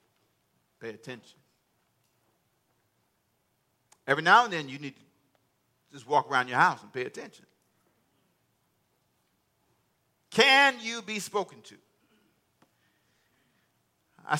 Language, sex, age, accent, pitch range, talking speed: English, male, 50-69, American, 135-195 Hz, 95 wpm